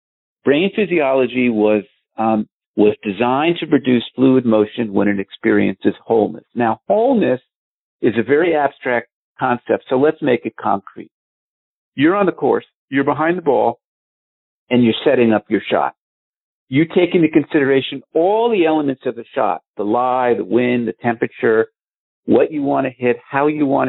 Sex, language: male, English